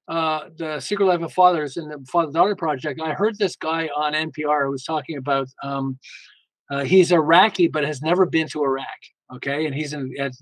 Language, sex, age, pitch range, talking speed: English, male, 50-69, 150-200 Hz, 200 wpm